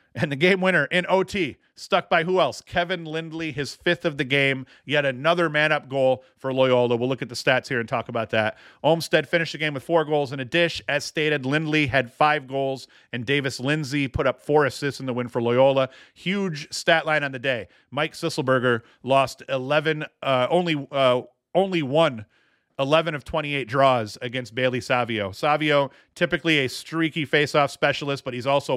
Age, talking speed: 40-59, 195 wpm